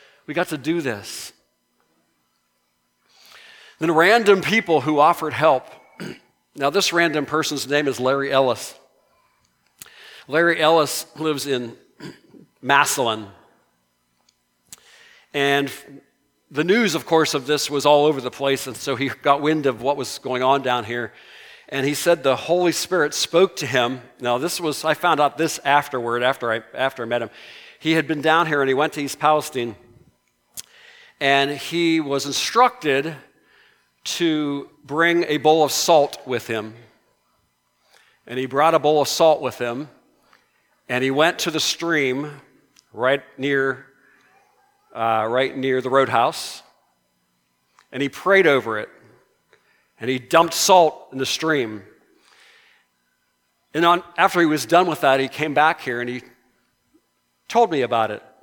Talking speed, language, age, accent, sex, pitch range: 150 wpm, English, 50-69, American, male, 130-160 Hz